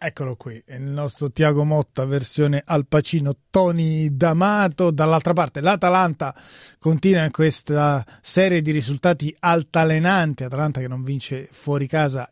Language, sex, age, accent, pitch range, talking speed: Italian, male, 30-49, native, 135-160 Hz, 130 wpm